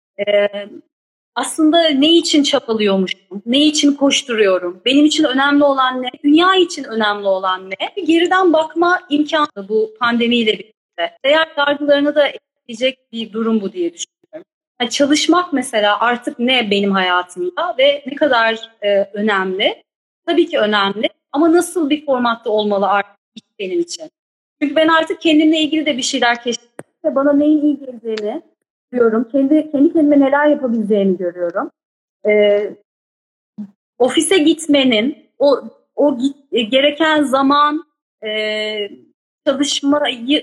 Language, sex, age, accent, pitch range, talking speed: Turkish, female, 30-49, native, 225-300 Hz, 130 wpm